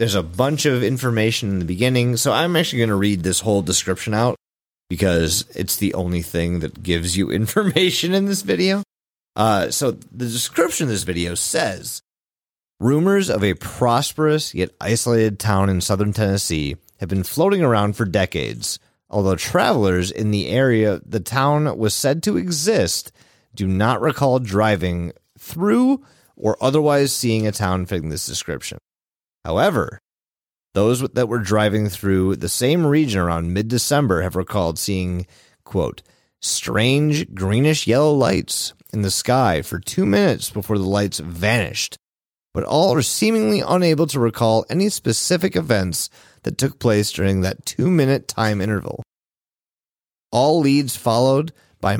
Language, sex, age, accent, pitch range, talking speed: English, male, 30-49, American, 95-130 Hz, 150 wpm